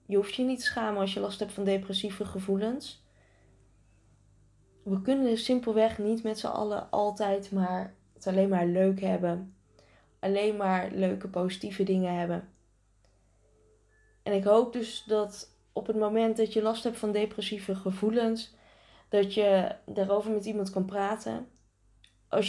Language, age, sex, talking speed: Dutch, 20-39, female, 150 wpm